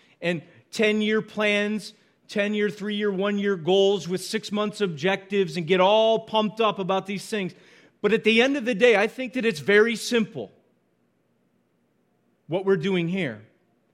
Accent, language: American, English